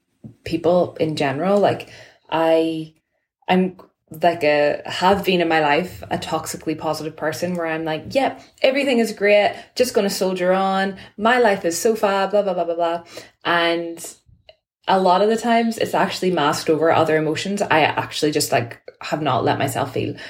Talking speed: 175 wpm